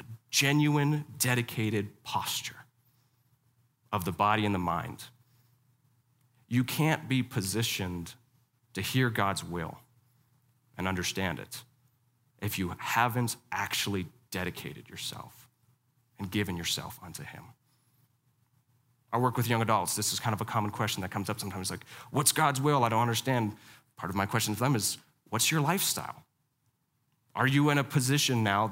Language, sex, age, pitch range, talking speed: English, male, 30-49, 105-130 Hz, 145 wpm